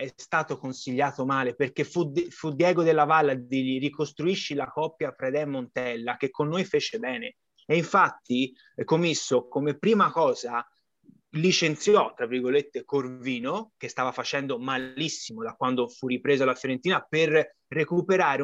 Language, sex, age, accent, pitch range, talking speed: Italian, male, 30-49, native, 145-220 Hz, 145 wpm